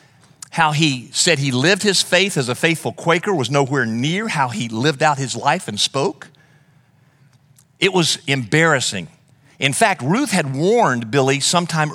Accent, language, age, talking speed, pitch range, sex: American, English, 50-69, 160 wpm, 135-175 Hz, male